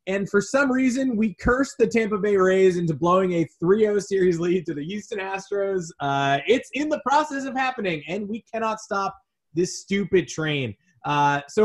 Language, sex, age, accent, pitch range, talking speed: English, male, 20-39, American, 140-205 Hz, 185 wpm